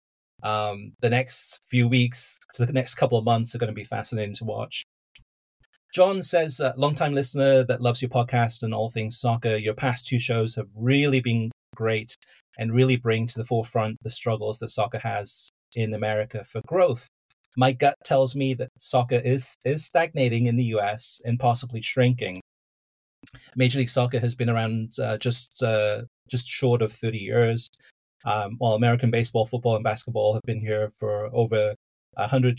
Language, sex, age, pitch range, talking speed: English, male, 30-49, 110-125 Hz, 180 wpm